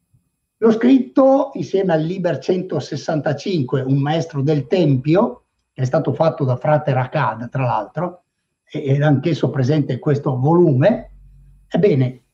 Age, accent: 60-79, native